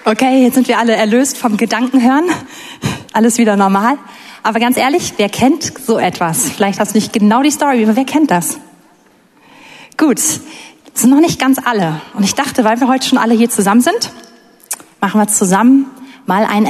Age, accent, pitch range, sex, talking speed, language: 30-49, German, 205-265 Hz, female, 185 wpm, German